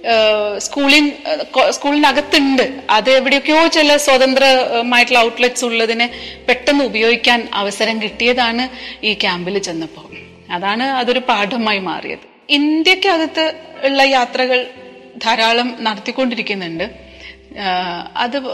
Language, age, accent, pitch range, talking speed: Malayalam, 30-49, native, 205-270 Hz, 80 wpm